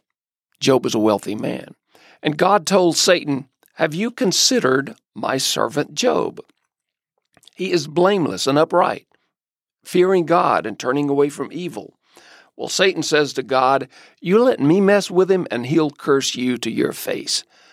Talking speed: 150 wpm